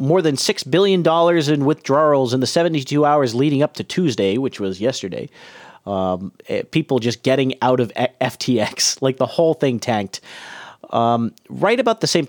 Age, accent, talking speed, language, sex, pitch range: 40-59, American, 175 wpm, English, male, 115-165 Hz